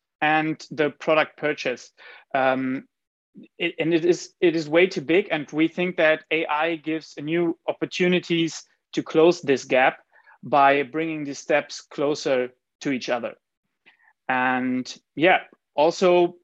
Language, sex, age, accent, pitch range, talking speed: English, male, 30-49, German, 140-165 Hz, 130 wpm